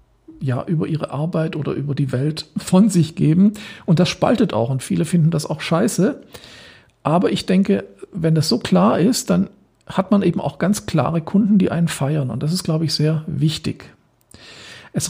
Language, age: German, 50-69